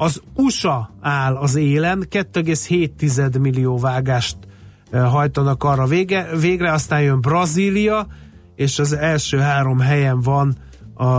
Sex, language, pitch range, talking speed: male, Hungarian, 125-150 Hz, 105 wpm